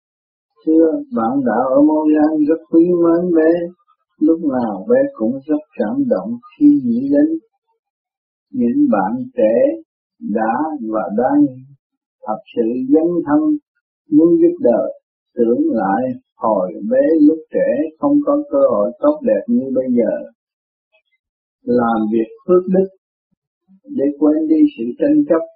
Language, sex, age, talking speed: Vietnamese, male, 50-69, 135 wpm